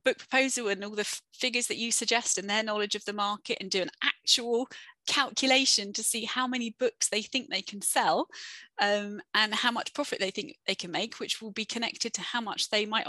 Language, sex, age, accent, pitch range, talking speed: English, female, 30-49, British, 205-255 Hz, 225 wpm